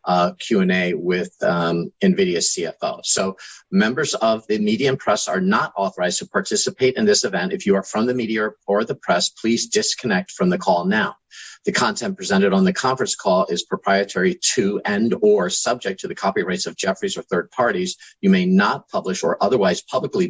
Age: 50-69